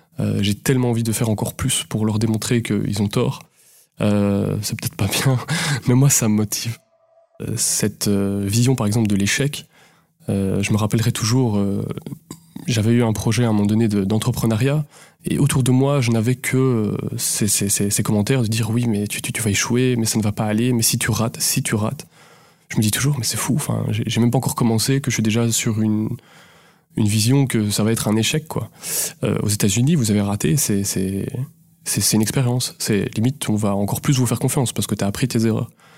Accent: French